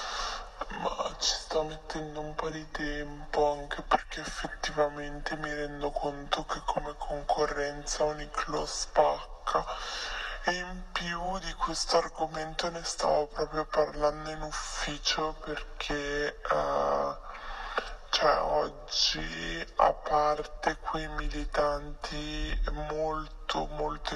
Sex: female